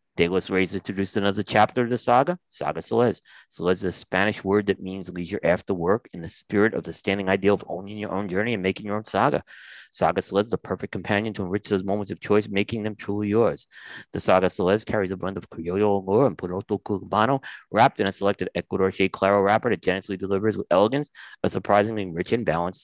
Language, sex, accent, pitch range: English, male, American, 95-110 Hz